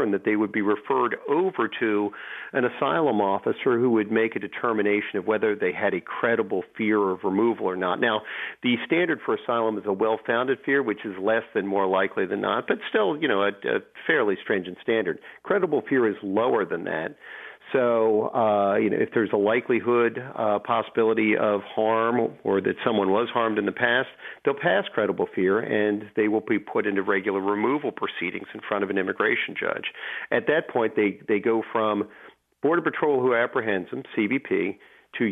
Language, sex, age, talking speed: English, male, 50-69, 190 wpm